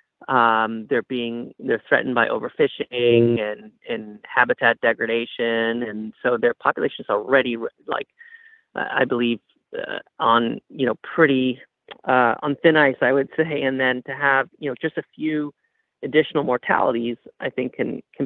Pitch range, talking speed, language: 120-150 Hz, 160 wpm, English